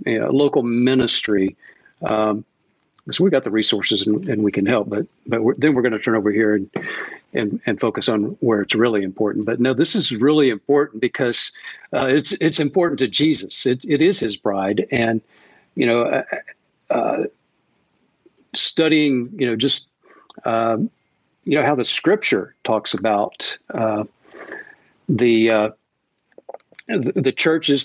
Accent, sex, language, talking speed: American, male, English, 155 wpm